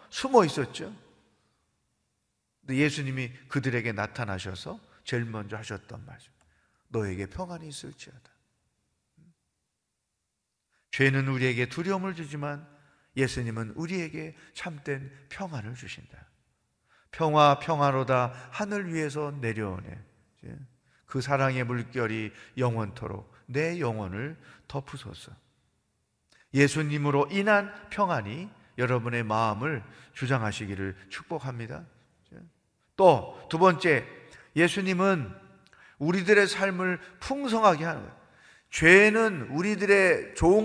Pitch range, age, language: 125-175 Hz, 40-59, Korean